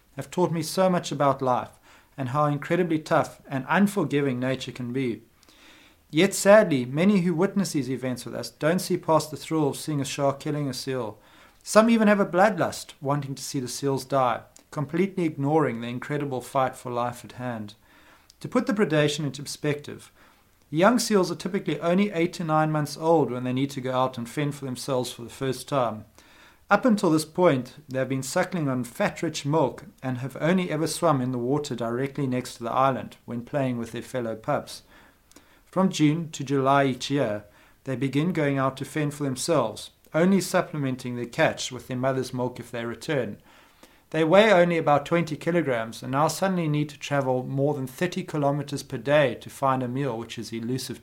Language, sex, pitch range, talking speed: English, male, 130-160 Hz, 195 wpm